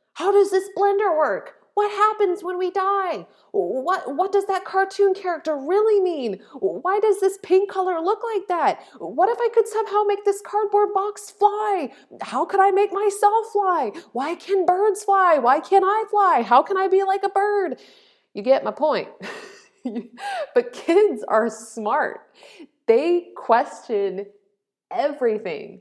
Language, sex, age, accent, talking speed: English, female, 30-49, American, 160 wpm